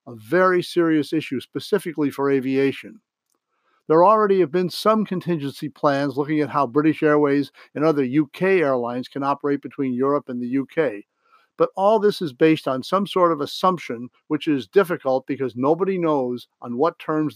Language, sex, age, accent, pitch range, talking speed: English, male, 50-69, American, 130-175 Hz, 170 wpm